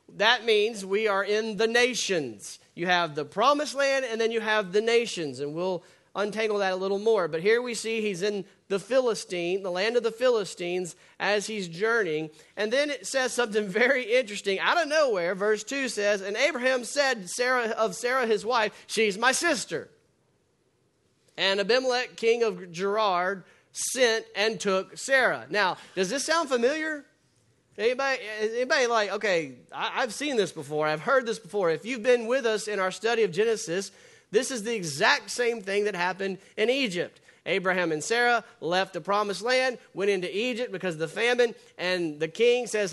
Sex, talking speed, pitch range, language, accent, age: male, 180 wpm, 195-245 Hz, English, American, 40-59